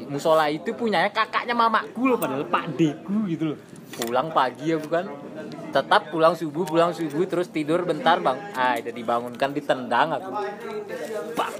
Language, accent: Indonesian, native